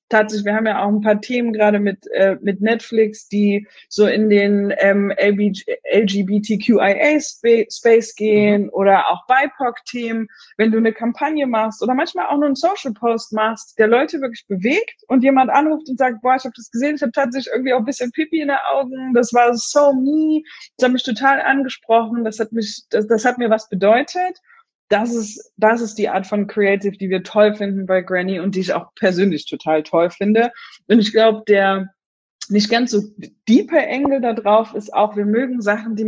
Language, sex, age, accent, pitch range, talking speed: German, female, 20-39, German, 210-280 Hz, 195 wpm